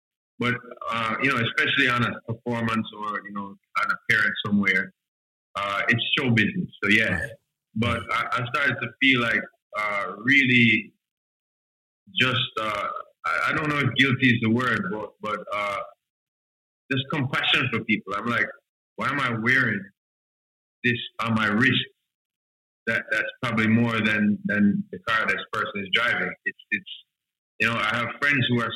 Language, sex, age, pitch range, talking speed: English, male, 30-49, 105-125 Hz, 165 wpm